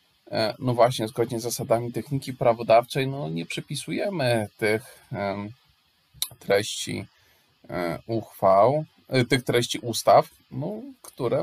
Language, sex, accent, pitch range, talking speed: Polish, male, native, 110-135 Hz, 95 wpm